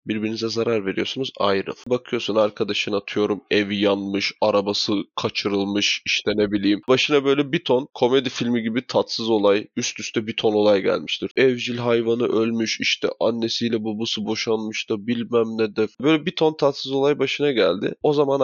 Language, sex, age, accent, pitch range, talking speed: Turkish, male, 20-39, native, 110-145 Hz, 160 wpm